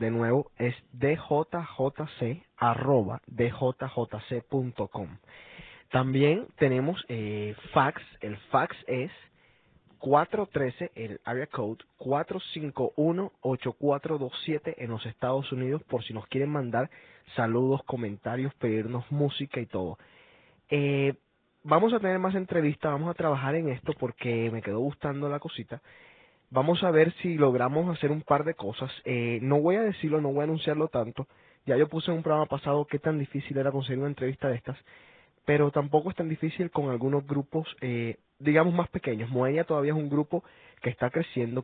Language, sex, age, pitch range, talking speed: Spanish, male, 20-39, 125-155 Hz, 155 wpm